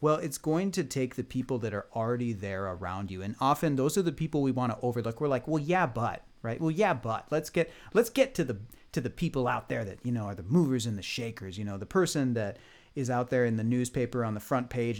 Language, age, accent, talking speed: English, 40-59, American, 270 wpm